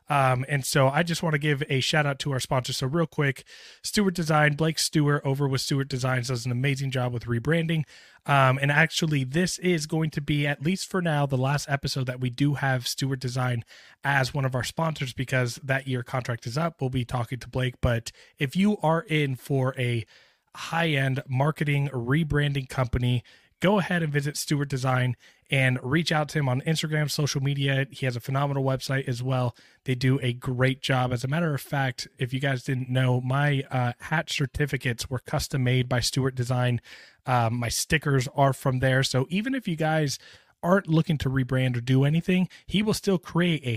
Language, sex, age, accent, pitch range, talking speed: English, male, 20-39, American, 130-155 Hz, 205 wpm